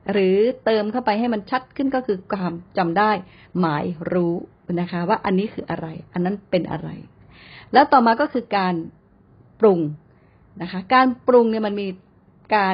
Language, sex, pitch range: Thai, female, 175-225 Hz